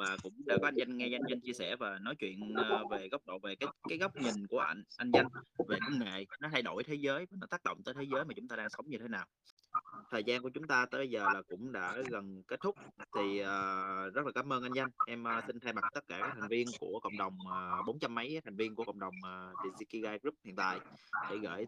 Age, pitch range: 20-39, 95-125 Hz